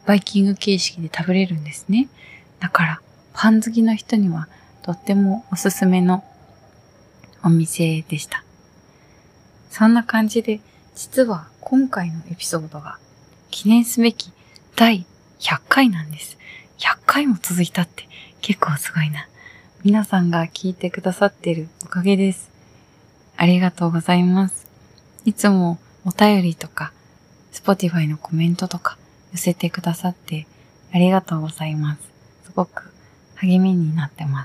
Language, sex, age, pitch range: Japanese, female, 20-39, 165-205 Hz